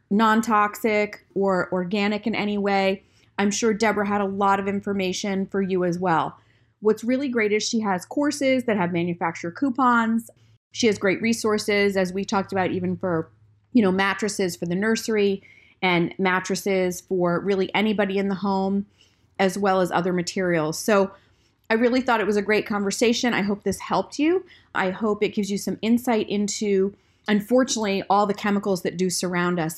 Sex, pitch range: female, 185-215 Hz